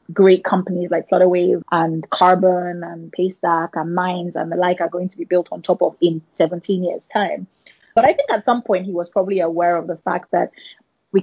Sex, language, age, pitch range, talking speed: female, English, 20-39, 170-185 Hz, 215 wpm